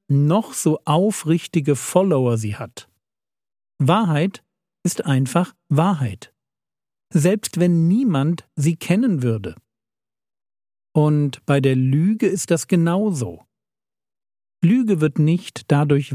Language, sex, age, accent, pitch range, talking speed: German, male, 50-69, German, 125-185 Hz, 100 wpm